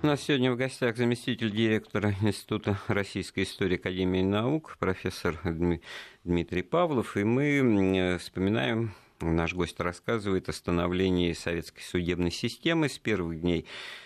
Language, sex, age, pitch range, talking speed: Russian, male, 50-69, 85-125 Hz, 125 wpm